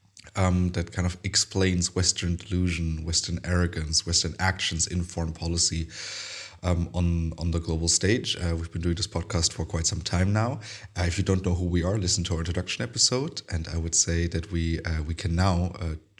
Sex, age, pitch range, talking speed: male, 30-49, 85-105 Hz, 200 wpm